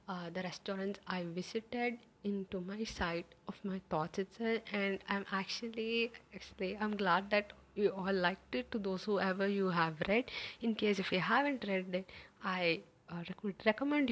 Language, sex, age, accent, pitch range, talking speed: English, female, 20-39, Indian, 185-220 Hz, 165 wpm